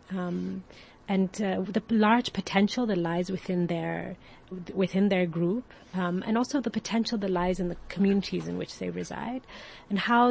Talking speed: 170 wpm